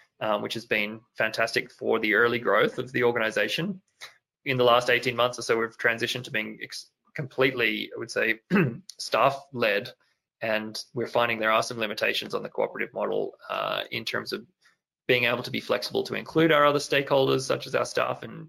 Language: English